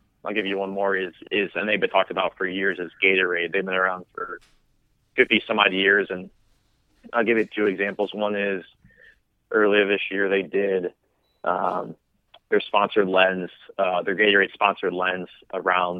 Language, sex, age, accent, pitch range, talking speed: English, male, 20-39, American, 95-100 Hz, 175 wpm